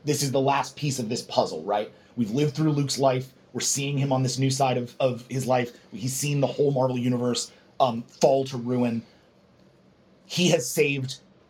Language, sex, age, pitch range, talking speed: English, male, 30-49, 130-155 Hz, 200 wpm